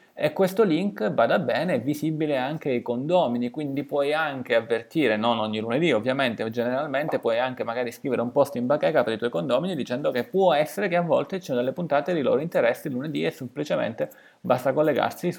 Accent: native